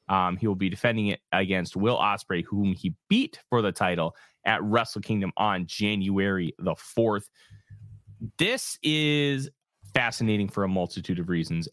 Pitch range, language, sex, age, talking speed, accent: 90-110 Hz, English, male, 30-49, 155 wpm, American